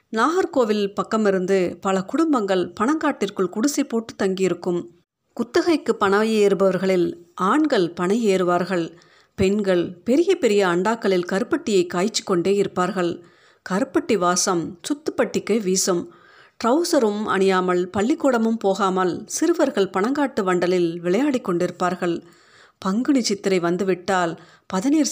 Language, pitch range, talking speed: Tamil, 180-220 Hz, 90 wpm